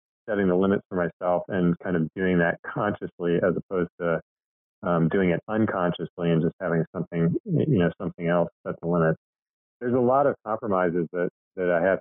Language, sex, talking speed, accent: English, male, 190 wpm, American